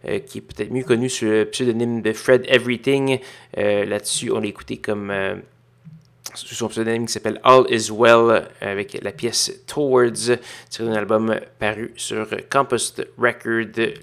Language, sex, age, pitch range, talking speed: French, male, 30-49, 110-120 Hz, 155 wpm